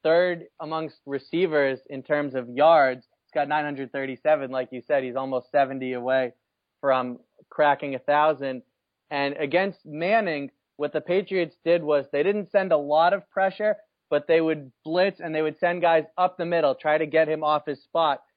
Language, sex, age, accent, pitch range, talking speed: English, male, 30-49, American, 145-175 Hz, 175 wpm